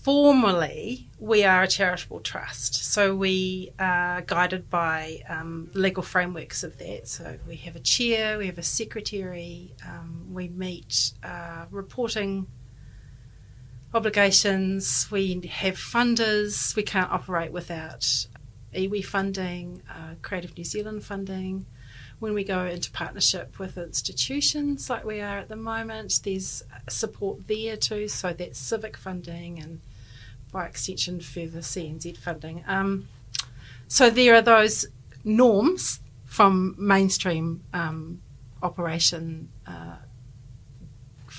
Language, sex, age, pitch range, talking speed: English, female, 40-59, 125-195 Hz, 120 wpm